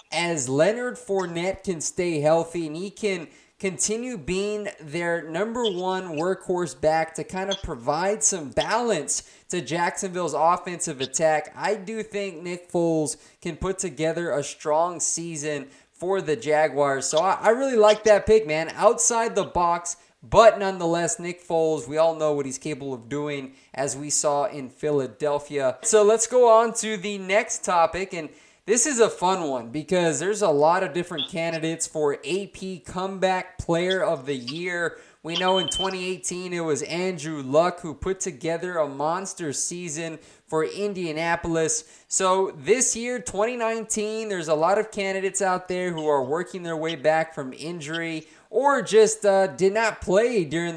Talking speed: 165 wpm